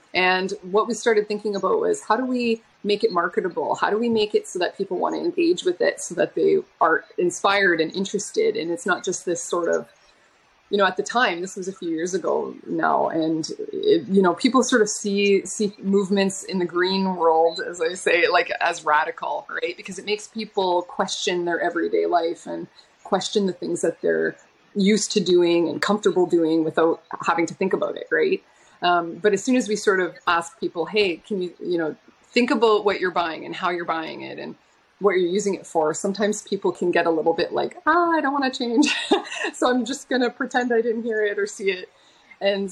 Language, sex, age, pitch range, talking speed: English, female, 30-49, 175-245 Hz, 225 wpm